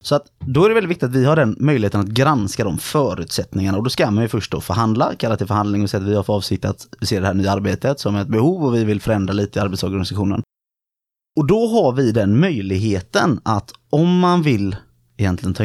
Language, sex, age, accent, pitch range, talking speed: Swedish, male, 20-39, native, 100-135 Hz, 240 wpm